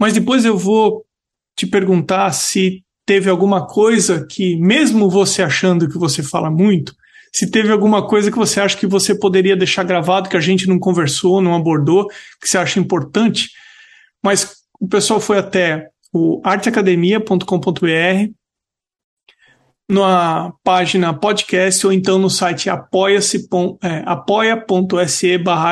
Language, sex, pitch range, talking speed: Portuguese, male, 175-200 Hz, 135 wpm